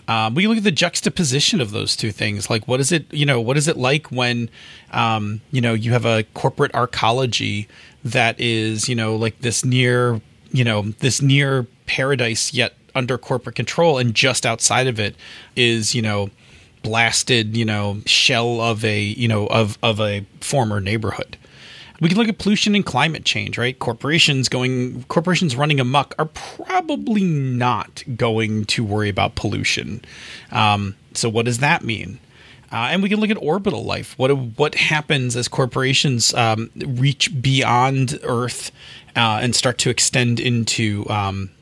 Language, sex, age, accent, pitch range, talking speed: English, male, 30-49, American, 110-135 Hz, 170 wpm